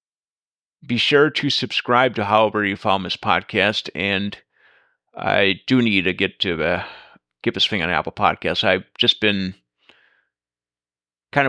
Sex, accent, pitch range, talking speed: male, American, 85-120 Hz, 145 wpm